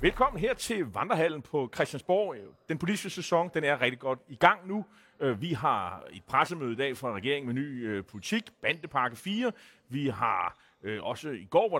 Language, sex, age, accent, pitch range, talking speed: Danish, male, 30-49, native, 120-165 Hz, 190 wpm